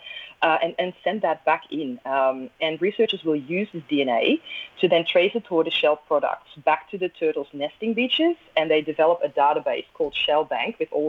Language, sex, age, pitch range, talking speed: English, female, 20-39, 150-185 Hz, 195 wpm